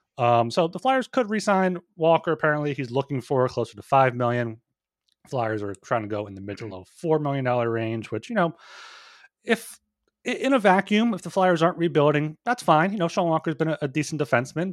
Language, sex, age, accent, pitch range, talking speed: English, male, 30-49, American, 115-160 Hz, 210 wpm